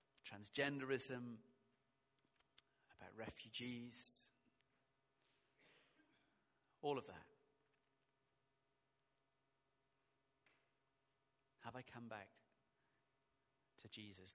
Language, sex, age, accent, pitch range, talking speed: English, male, 40-59, British, 120-150 Hz, 50 wpm